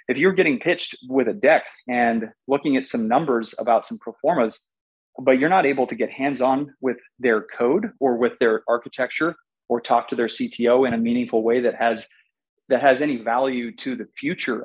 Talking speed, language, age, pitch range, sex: 195 wpm, English, 30-49, 120-165 Hz, male